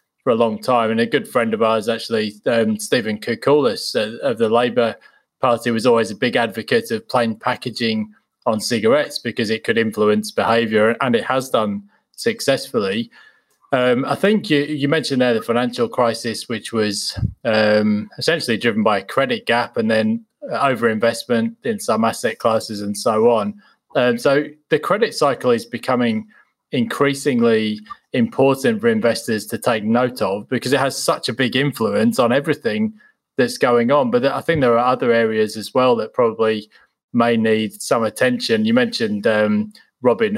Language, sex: English, male